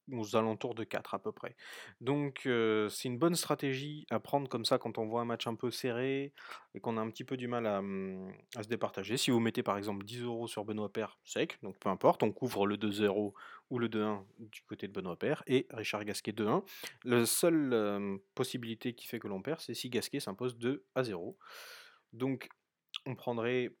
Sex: male